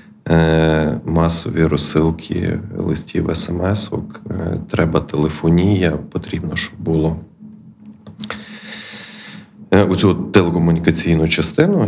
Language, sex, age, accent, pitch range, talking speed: Ukrainian, male, 20-39, native, 80-90 Hz, 60 wpm